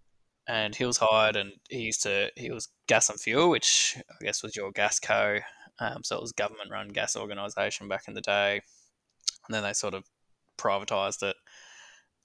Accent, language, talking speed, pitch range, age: Australian, English, 195 wpm, 105-120 Hz, 10-29